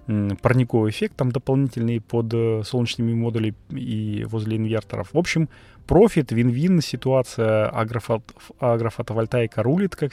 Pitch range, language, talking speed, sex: 105-135 Hz, Russian, 105 wpm, male